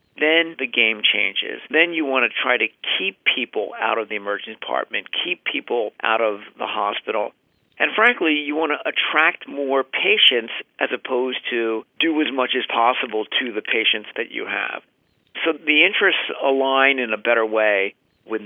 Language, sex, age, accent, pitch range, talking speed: English, male, 50-69, American, 110-135 Hz, 175 wpm